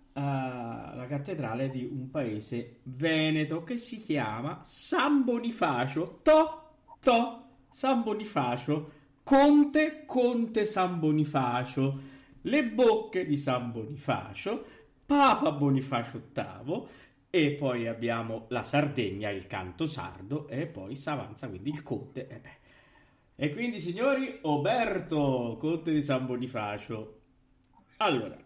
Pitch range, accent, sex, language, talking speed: 120-185 Hz, native, male, Italian, 100 wpm